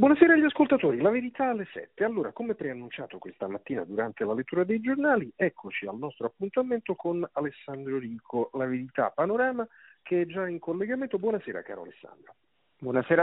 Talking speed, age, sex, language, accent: 165 wpm, 50-69, male, Italian, native